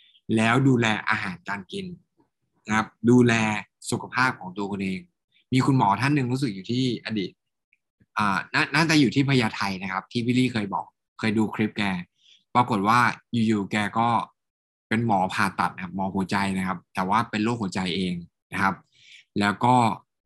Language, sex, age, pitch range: Thai, male, 20-39, 100-125 Hz